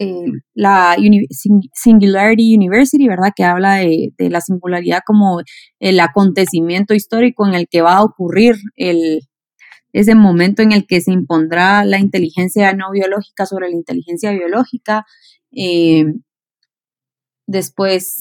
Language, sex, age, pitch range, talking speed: Spanish, female, 20-39, 180-225 Hz, 130 wpm